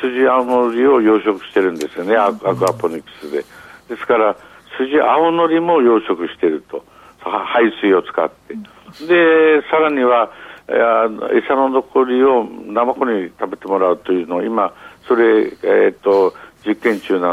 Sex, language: male, Japanese